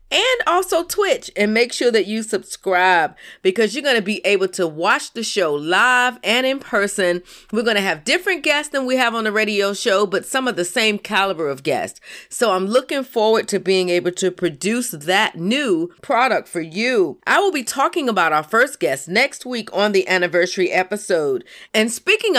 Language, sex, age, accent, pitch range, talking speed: English, female, 40-59, American, 195-290 Hz, 195 wpm